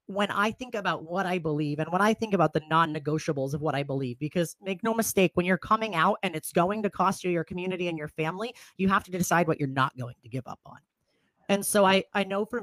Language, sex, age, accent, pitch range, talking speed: English, female, 30-49, American, 165-215 Hz, 260 wpm